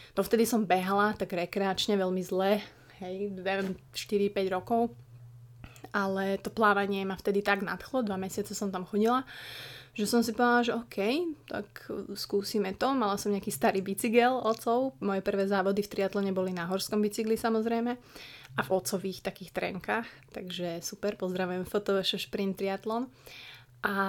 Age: 20-39